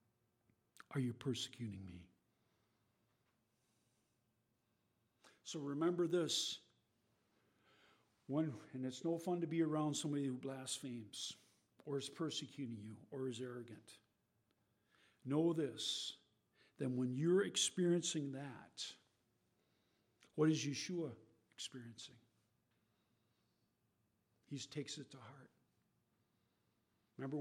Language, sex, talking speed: English, male, 90 wpm